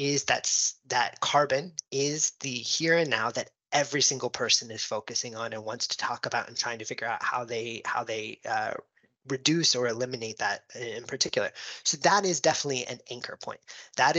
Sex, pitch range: male, 125-165 Hz